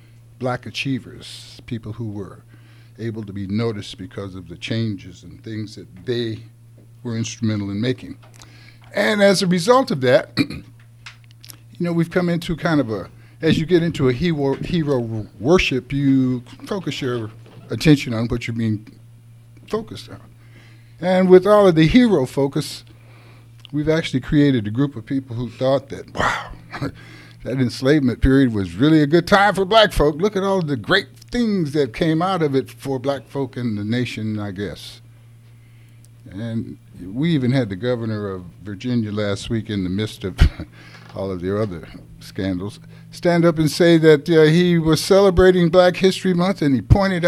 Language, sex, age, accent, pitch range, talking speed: English, male, 50-69, American, 115-160 Hz, 170 wpm